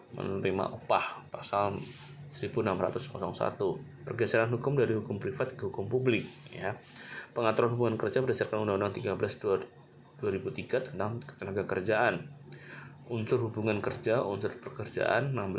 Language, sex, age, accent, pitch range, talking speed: Indonesian, male, 20-39, native, 100-125 Hz, 105 wpm